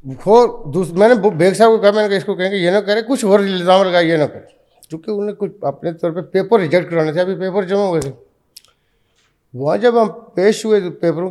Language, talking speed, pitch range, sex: Urdu, 250 wpm, 145-195 Hz, male